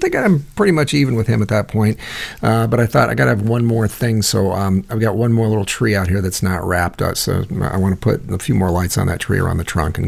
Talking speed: 305 wpm